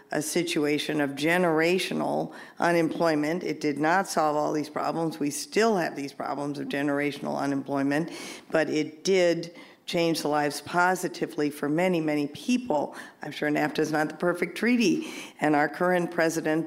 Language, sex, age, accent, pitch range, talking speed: English, female, 50-69, American, 150-180 Hz, 155 wpm